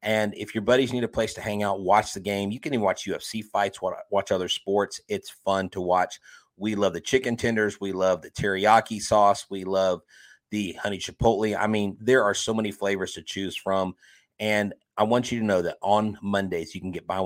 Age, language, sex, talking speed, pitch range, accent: 30-49, English, male, 225 wpm, 95-110 Hz, American